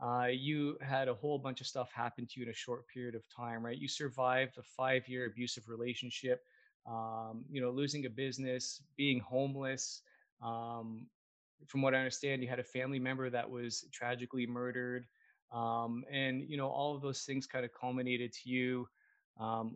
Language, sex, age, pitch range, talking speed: English, male, 20-39, 120-145 Hz, 180 wpm